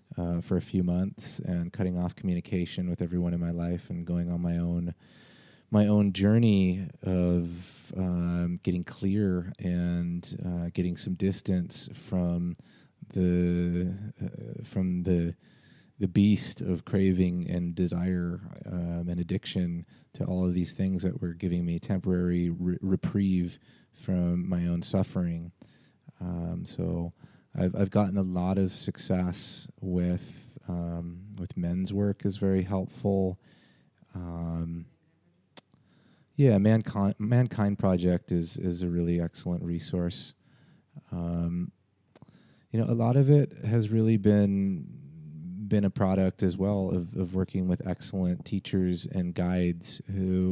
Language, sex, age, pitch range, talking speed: English, male, 30-49, 85-100 Hz, 135 wpm